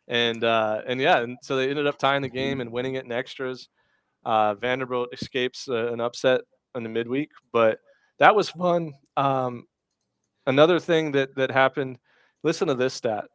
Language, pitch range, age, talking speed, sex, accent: English, 120-160 Hz, 30-49, 180 wpm, male, American